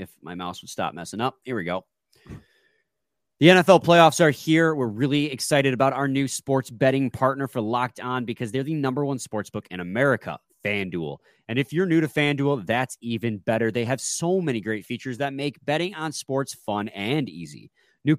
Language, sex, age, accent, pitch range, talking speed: English, male, 30-49, American, 115-155 Hz, 200 wpm